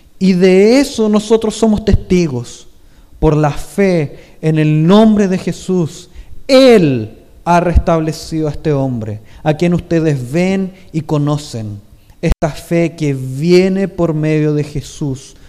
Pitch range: 120-170 Hz